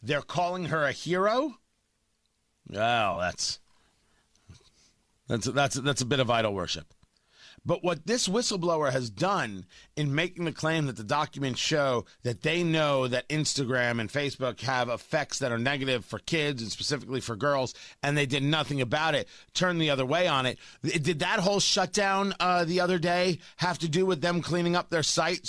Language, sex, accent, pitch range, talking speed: English, male, American, 140-215 Hz, 180 wpm